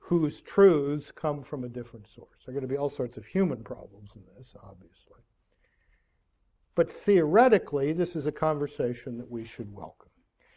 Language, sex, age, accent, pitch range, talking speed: English, male, 60-79, American, 120-160 Hz, 170 wpm